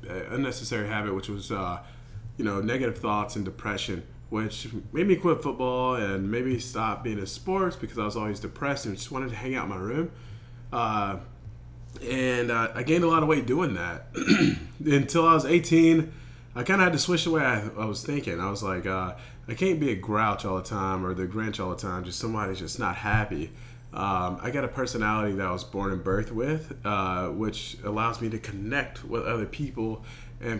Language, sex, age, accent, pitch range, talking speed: English, male, 30-49, American, 105-140 Hz, 210 wpm